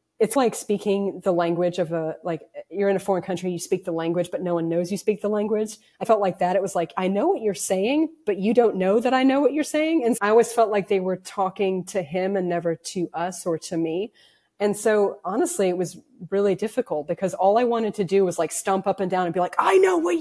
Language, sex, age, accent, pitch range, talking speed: English, female, 30-49, American, 180-230 Hz, 265 wpm